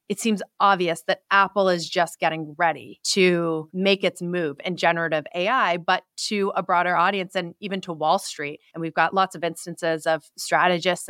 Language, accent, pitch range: English, American, 165-195 Hz